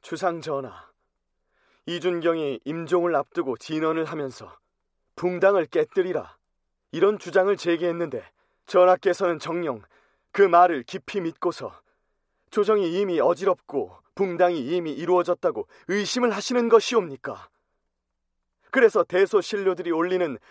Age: 30-49